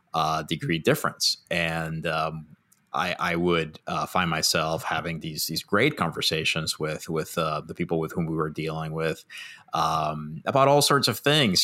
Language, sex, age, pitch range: English, male, 30-49, 85-100 Hz